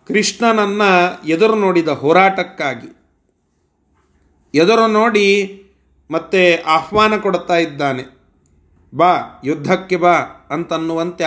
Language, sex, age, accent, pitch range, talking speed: Kannada, male, 40-59, native, 140-180 Hz, 75 wpm